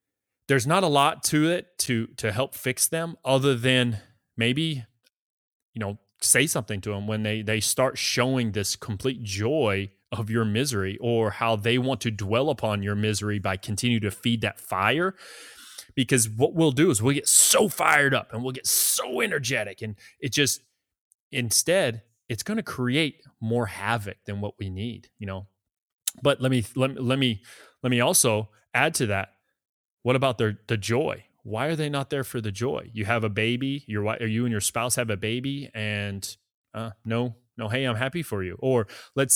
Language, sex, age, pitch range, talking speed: English, male, 20-39, 105-130 Hz, 190 wpm